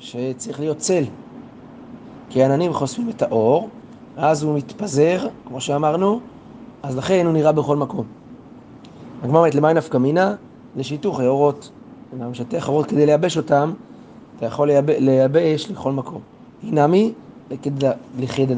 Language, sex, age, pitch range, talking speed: Hebrew, male, 30-49, 135-180 Hz, 130 wpm